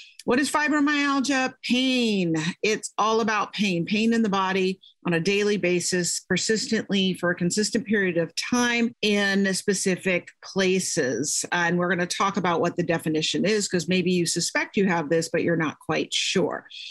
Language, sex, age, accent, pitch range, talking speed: English, female, 40-59, American, 180-235 Hz, 170 wpm